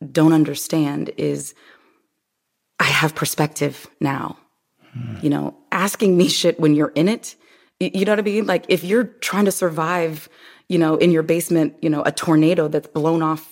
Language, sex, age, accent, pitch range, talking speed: English, female, 20-39, American, 145-185 Hz, 175 wpm